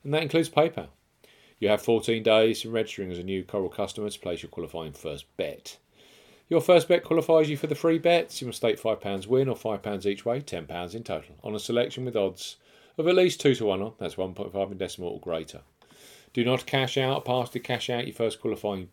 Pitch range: 100-130 Hz